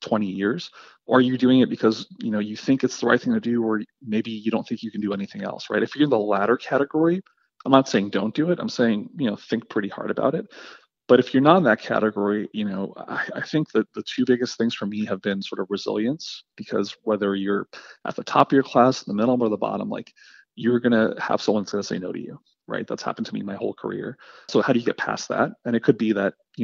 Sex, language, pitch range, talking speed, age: male, English, 105-125 Hz, 270 wpm, 30-49